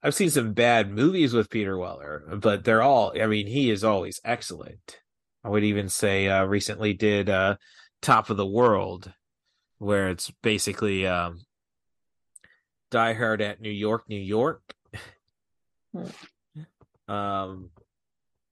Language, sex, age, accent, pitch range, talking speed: English, male, 30-49, American, 95-115 Hz, 135 wpm